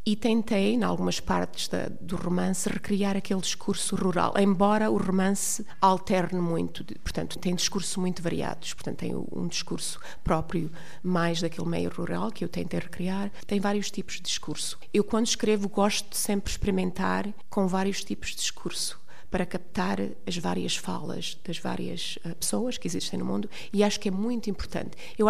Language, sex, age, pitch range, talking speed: Portuguese, female, 30-49, 175-205 Hz, 175 wpm